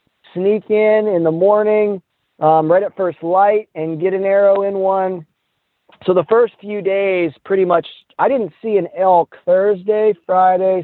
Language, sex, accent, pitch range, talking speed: English, male, American, 165-205 Hz, 165 wpm